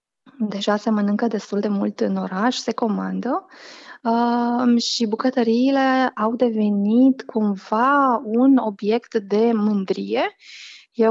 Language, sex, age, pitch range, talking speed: Romanian, female, 20-39, 195-245 Hz, 115 wpm